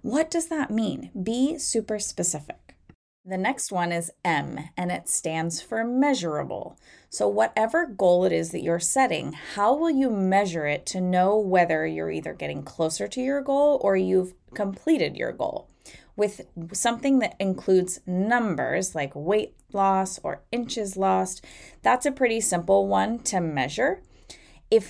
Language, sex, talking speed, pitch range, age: English, female, 155 wpm, 175-255 Hz, 20-39